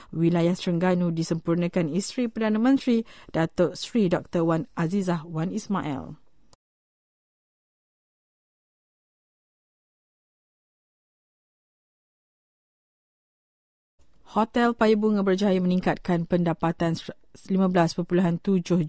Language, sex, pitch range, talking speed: English, female, 160-190 Hz, 65 wpm